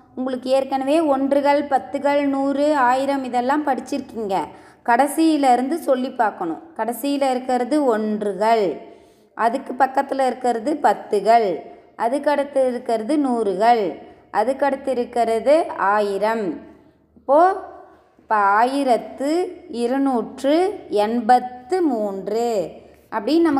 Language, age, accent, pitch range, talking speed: Tamil, 20-39, native, 235-285 Hz, 80 wpm